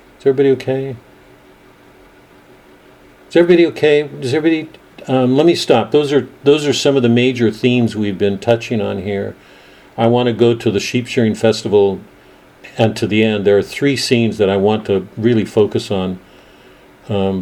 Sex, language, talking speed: male, English, 175 wpm